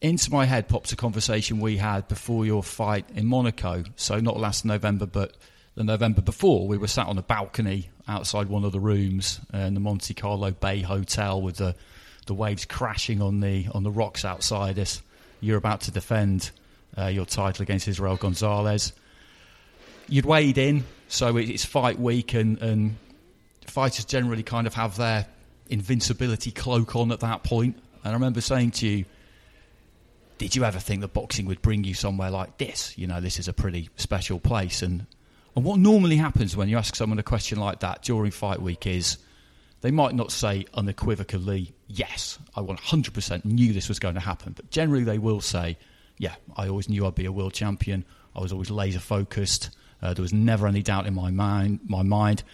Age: 30-49